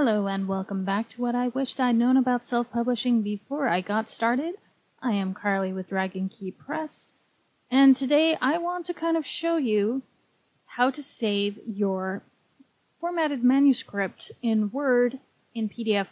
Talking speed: 160 wpm